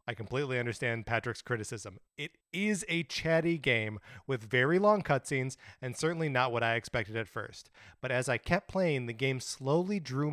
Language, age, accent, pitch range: English, 30-49, American, 115-150 Hz